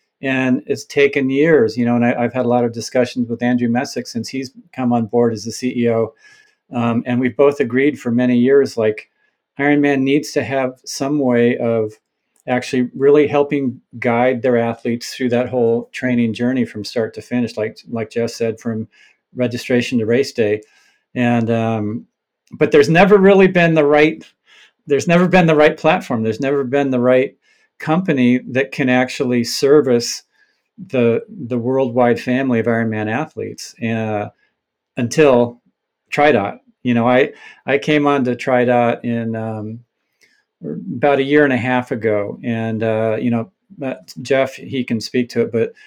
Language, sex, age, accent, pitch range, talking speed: English, male, 50-69, American, 115-140 Hz, 165 wpm